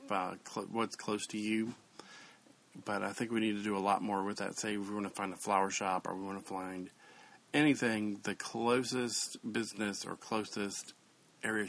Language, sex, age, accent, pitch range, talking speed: English, male, 40-59, American, 100-115 Hz, 190 wpm